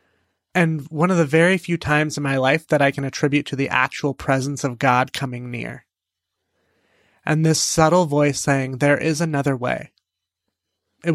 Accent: American